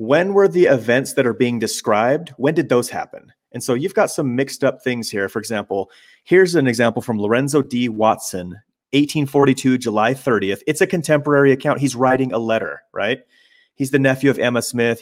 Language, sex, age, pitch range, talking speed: English, male, 30-49, 110-140 Hz, 190 wpm